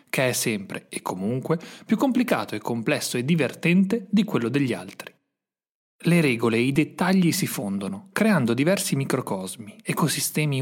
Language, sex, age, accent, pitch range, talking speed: Italian, male, 30-49, native, 120-185 Hz, 145 wpm